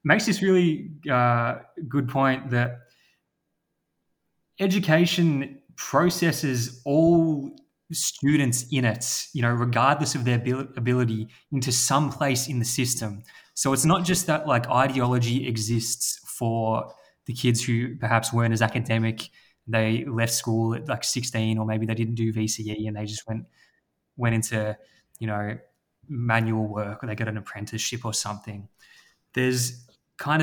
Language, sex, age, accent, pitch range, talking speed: English, male, 20-39, Australian, 115-135 Hz, 140 wpm